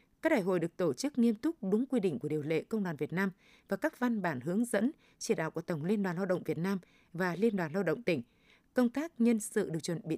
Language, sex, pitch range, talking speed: Vietnamese, female, 175-235 Hz, 275 wpm